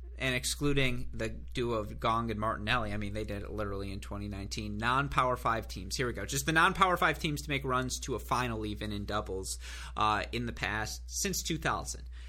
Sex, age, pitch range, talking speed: male, 30-49, 110-135 Hz, 205 wpm